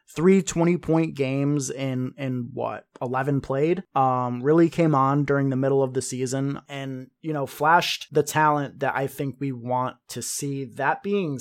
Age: 20-39